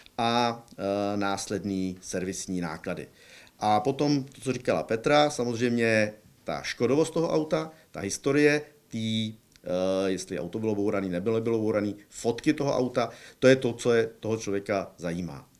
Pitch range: 100-130 Hz